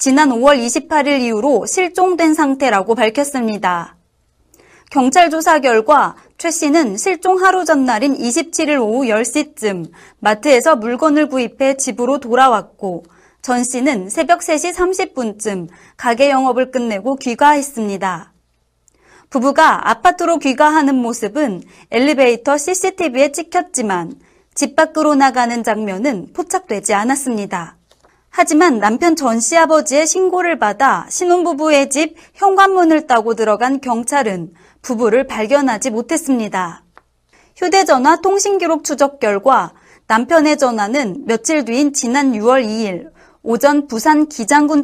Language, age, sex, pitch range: Korean, 30-49, female, 230-320 Hz